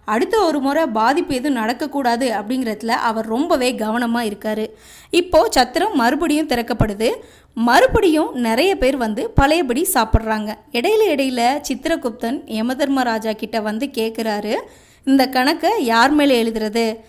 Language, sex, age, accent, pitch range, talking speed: Tamil, female, 20-39, native, 230-315 Hz, 115 wpm